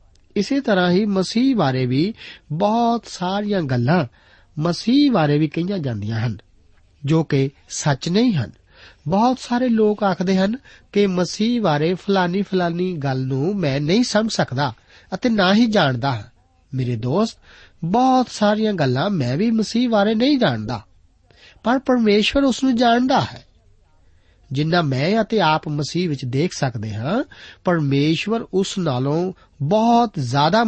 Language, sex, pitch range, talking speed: Punjabi, male, 130-210 Hz, 140 wpm